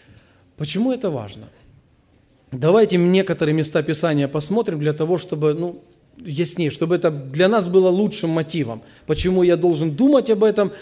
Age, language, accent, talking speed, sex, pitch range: 40-59, Russian, native, 145 wpm, male, 145-215 Hz